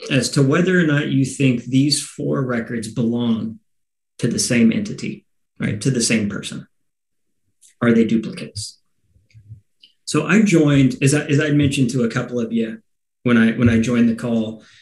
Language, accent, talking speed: Spanish, American, 175 wpm